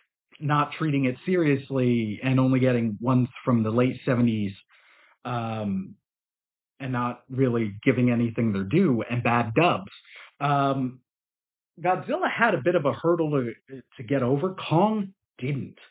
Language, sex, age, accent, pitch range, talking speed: English, male, 40-59, American, 125-170 Hz, 140 wpm